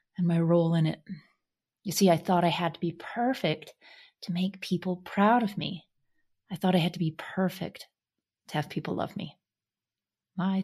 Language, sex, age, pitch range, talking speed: English, female, 30-49, 155-190 Hz, 185 wpm